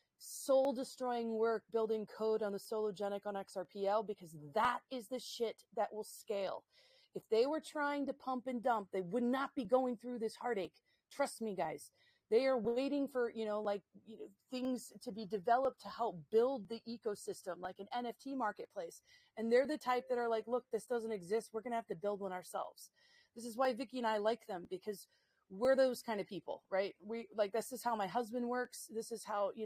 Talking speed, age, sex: 210 wpm, 30-49, female